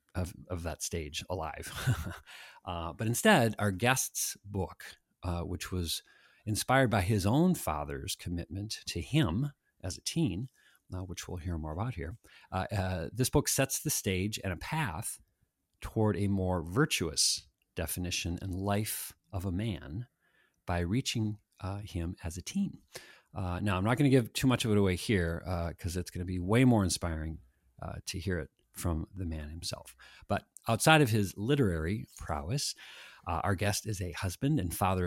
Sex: male